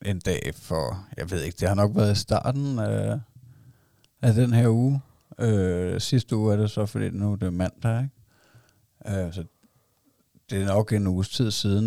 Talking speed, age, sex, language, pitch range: 180 wpm, 60-79, male, Danish, 95-115 Hz